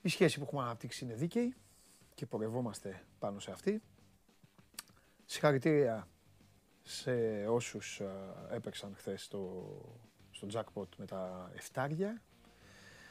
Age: 30-49